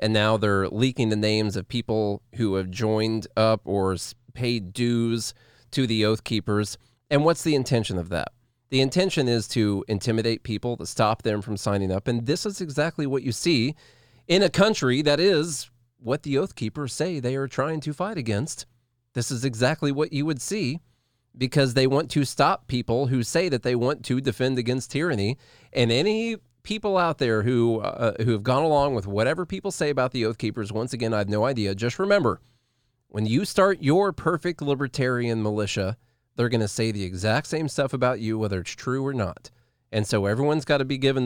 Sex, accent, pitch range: male, American, 110-135 Hz